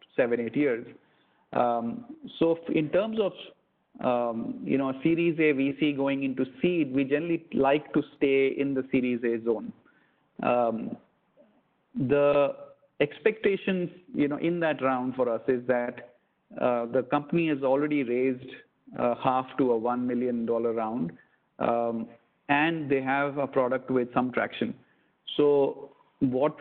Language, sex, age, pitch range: English, male, 50-69, 125-145 Hz